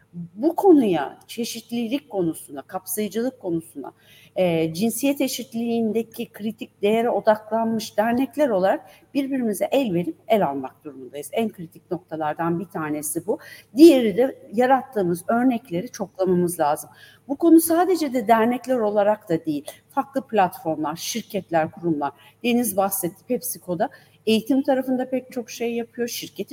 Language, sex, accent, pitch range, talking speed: Turkish, female, native, 180-245 Hz, 120 wpm